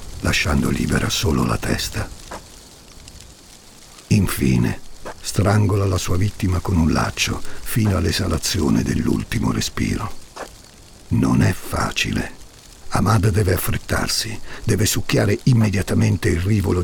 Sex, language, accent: male, Italian, native